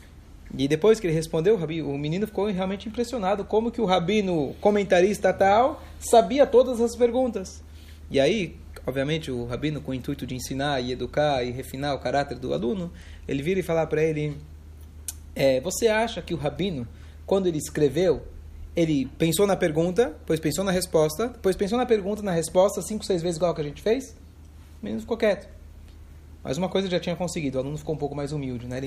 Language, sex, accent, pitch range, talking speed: Portuguese, male, Brazilian, 130-190 Hz, 195 wpm